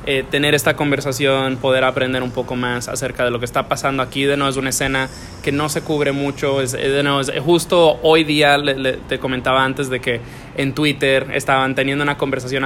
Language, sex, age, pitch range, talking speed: English, male, 20-39, 125-150 Hz, 220 wpm